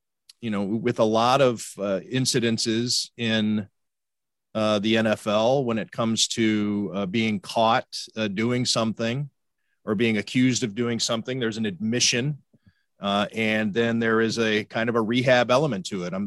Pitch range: 110-130 Hz